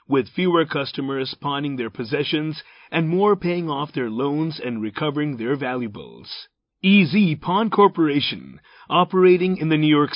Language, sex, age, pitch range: Japanese, male, 30-49, 135-165 Hz